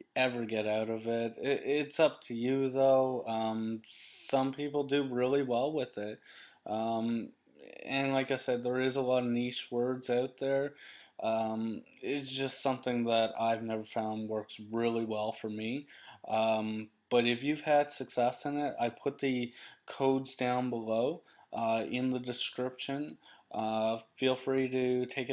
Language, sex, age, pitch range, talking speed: English, male, 20-39, 120-140 Hz, 165 wpm